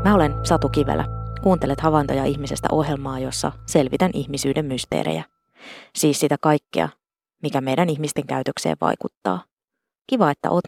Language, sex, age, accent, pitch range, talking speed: Finnish, female, 20-39, native, 140-165 Hz, 130 wpm